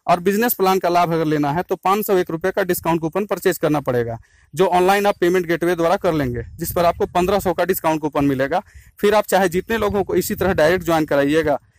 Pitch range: 155-190 Hz